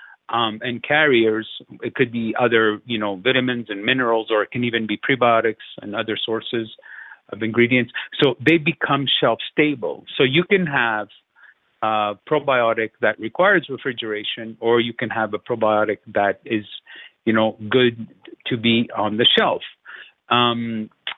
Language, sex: English, male